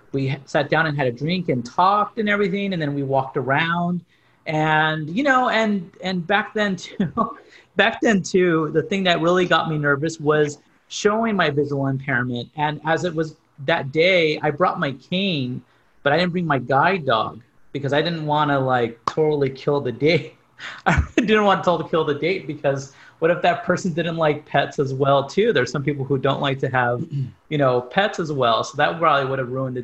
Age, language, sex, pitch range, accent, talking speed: 30-49, English, male, 140-180 Hz, American, 210 wpm